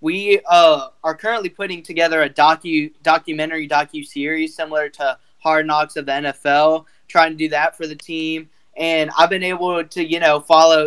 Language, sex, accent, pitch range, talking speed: English, male, American, 150-170 Hz, 175 wpm